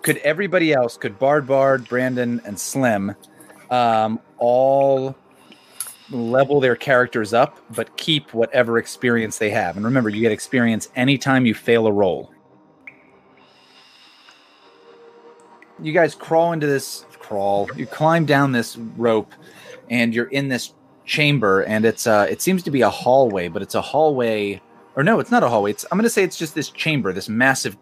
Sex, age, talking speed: male, 30-49, 170 wpm